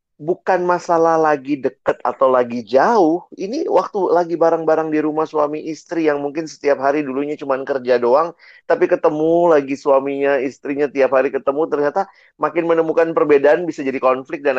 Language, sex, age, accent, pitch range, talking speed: Indonesian, male, 30-49, native, 120-160 Hz, 160 wpm